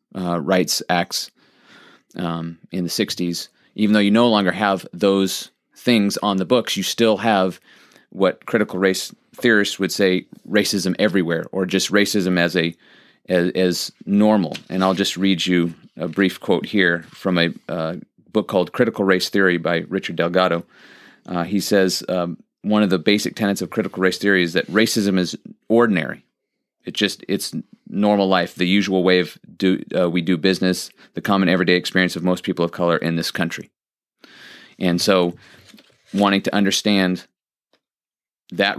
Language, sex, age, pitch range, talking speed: English, male, 30-49, 90-100 Hz, 165 wpm